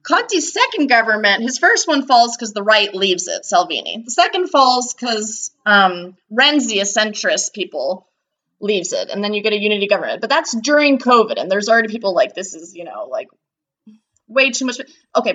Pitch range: 205-270 Hz